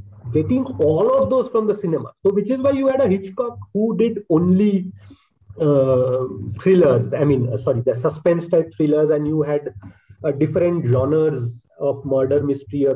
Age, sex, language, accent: 30-49, male, Bengali, native